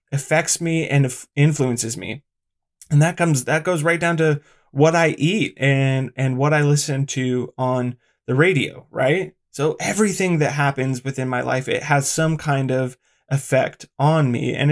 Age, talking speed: 20-39, 170 wpm